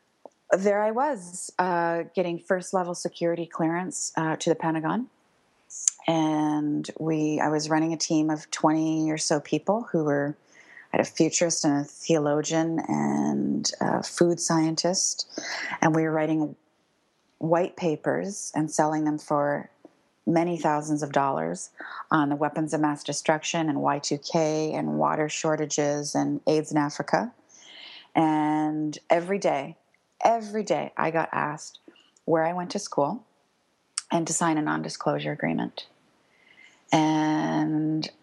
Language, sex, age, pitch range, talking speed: English, female, 30-49, 150-175 Hz, 135 wpm